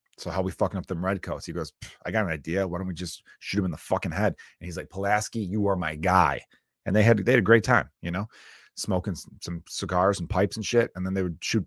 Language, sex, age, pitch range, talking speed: English, male, 30-49, 90-125 Hz, 280 wpm